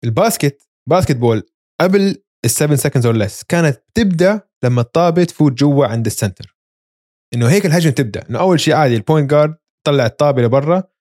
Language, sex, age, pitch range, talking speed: Arabic, male, 20-39, 125-175 Hz, 155 wpm